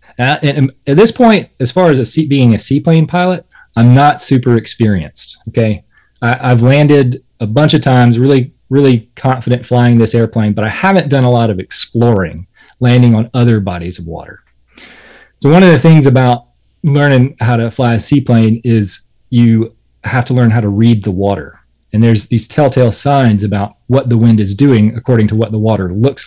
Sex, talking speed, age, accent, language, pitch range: male, 185 wpm, 30-49, American, English, 105-135 Hz